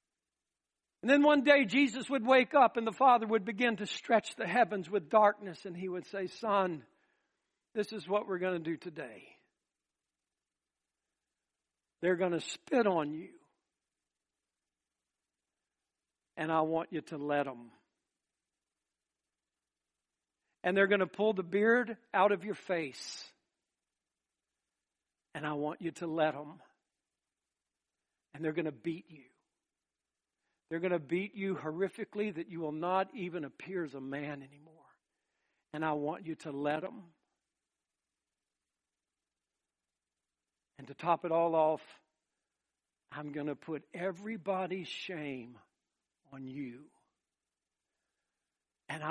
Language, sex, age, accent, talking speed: English, male, 60-79, American, 130 wpm